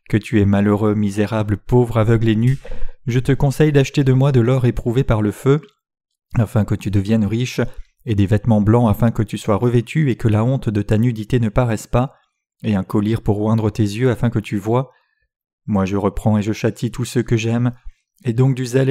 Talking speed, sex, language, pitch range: 225 wpm, male, French, 105-125 Hz